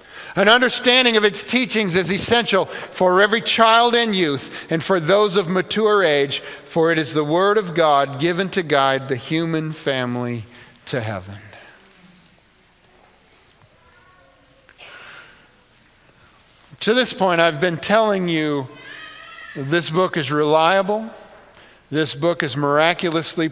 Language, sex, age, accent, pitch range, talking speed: English, male, 50-69, American, 150-195 Hz, 120 wpm